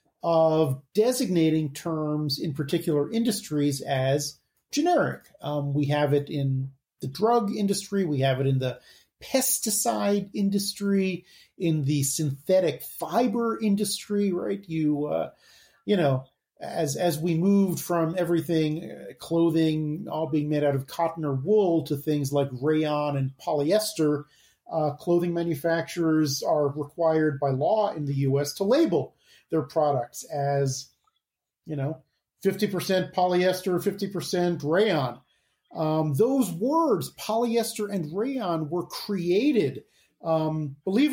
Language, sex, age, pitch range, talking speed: English, male, 40-59, 150-195 Hz, 125 wpm